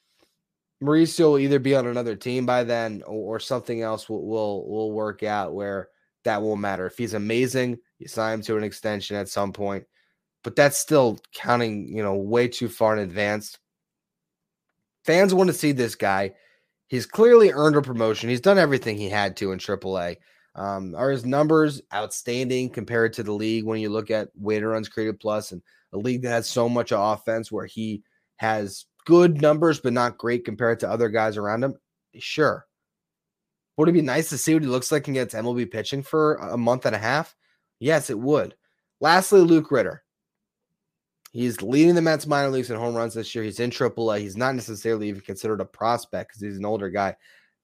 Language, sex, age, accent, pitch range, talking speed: English, male, 20-39, American, 110-150 Hz, 195 wpm